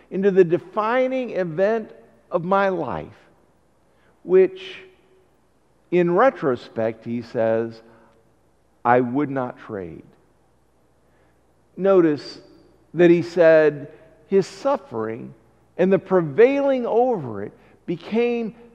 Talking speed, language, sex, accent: 90 wpm, English, male, American